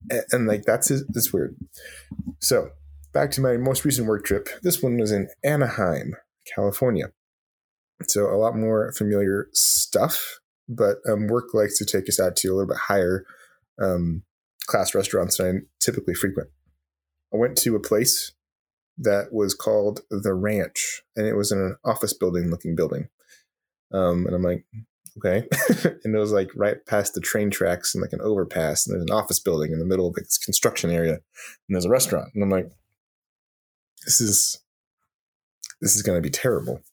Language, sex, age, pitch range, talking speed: English, male, 20-39, 90-110 Hz, 180 wpm